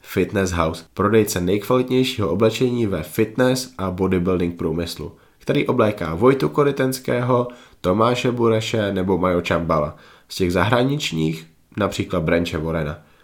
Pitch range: 90-110 Hz